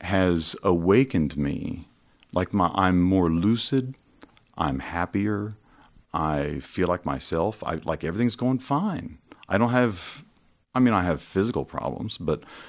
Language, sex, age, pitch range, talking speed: English, male, 50-69, 80-95 Hz, 135 wpm